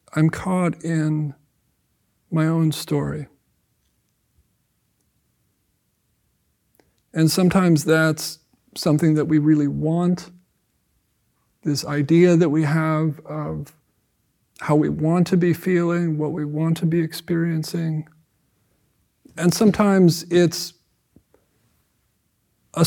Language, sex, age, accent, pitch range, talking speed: English, male, 50-69, American, 145-170 Hz, 95 wpm